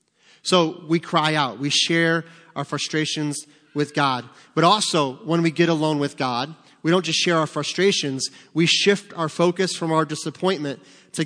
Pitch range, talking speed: 140-170 Hz, 170 wpm